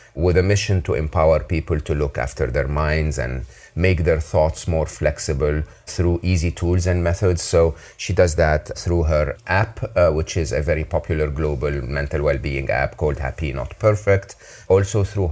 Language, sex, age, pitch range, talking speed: English, male, 30-49, 75-95 Hz, 175 wpm